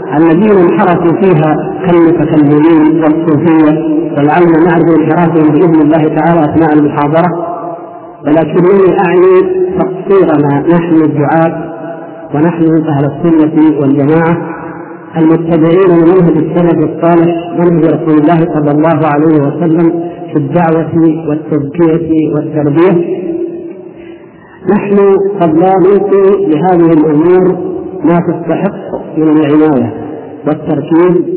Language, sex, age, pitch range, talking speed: Arabic, male, 50-69, 155-185 Hz, 90 wpm